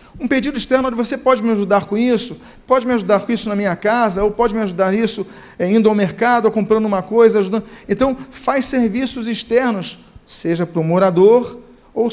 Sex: male